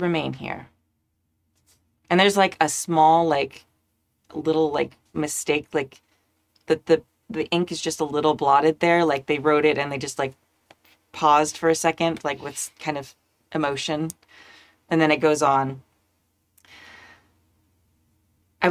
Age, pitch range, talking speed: 30-49, 105-165 Hz, 145 wpm